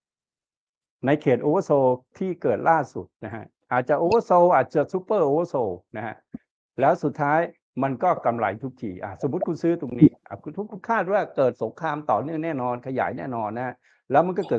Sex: male